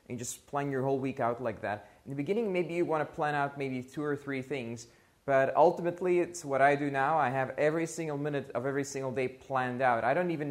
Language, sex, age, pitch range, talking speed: English, male, 20-39, 120-150 Hz, 250 wpm